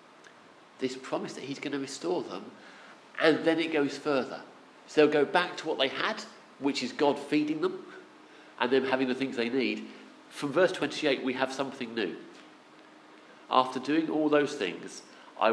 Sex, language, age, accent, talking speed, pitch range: male, English, 40-59, British, 180 wpm, 115-145 Hz